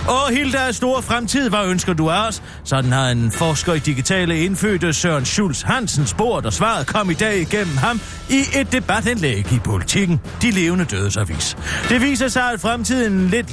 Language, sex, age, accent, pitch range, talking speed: Danish, male, 40-59, native, 140-210 Hz, 180 wpm